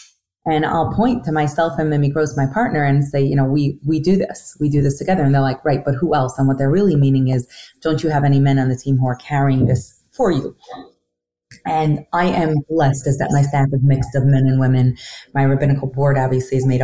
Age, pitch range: 30-49, 135-170 Hz